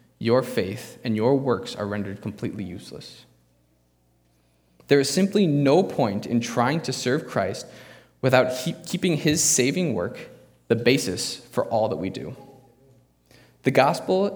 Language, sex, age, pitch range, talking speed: English, male, 20-39, 95-135 Hz, 140 wpm